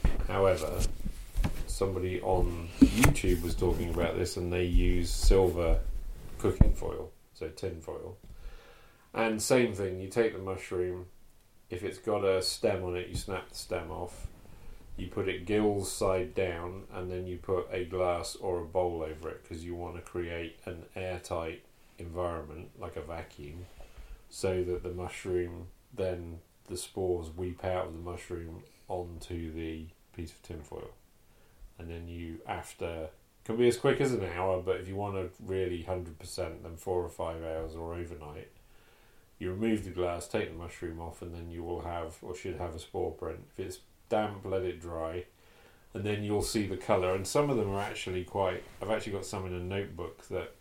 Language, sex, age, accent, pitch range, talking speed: English, male, 30-49, British, 85-95 Hz, 180 wpm